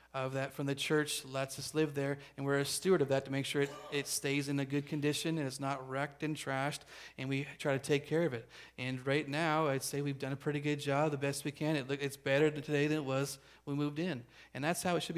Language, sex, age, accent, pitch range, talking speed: English, male, 40-59, American, 135-155 Hz, 280 wpm